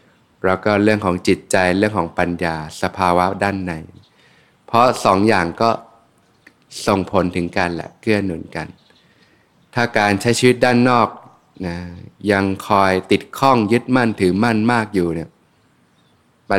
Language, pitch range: Thai, 90-110 Hz